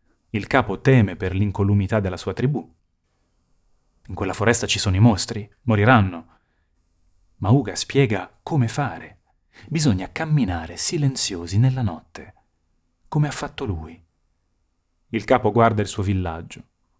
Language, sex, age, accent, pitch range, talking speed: Italian, male, 30-49, native, 85-115 Hz, 125 wpm